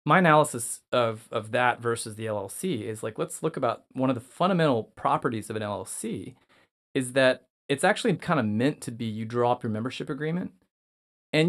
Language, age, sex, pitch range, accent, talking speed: English, 30-49, male, 110-145 Hz, American, 195 wpm